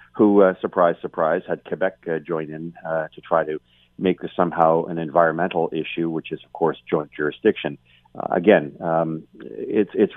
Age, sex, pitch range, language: 40-59, male, 80-95 Hz, English